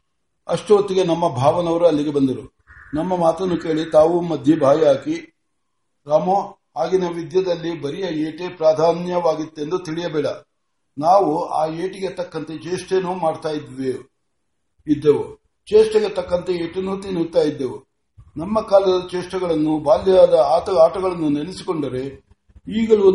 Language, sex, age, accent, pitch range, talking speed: Kannada, male, 60-79, native, 145-185 Hz, 85 wpm